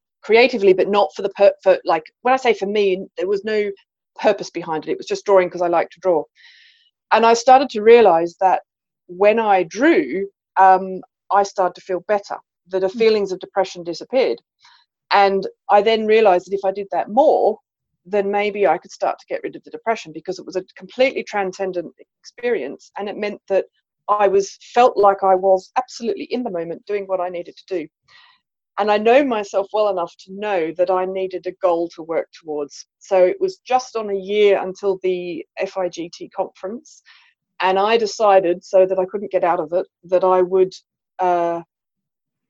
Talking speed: 195 wpm